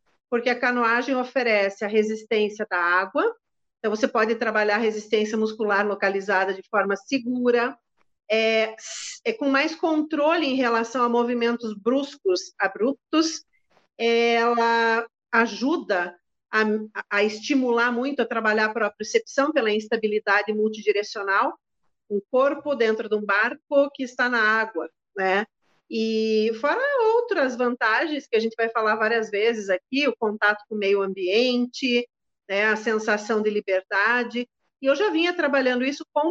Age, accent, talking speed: 40-59, Brazilian, 140 wpm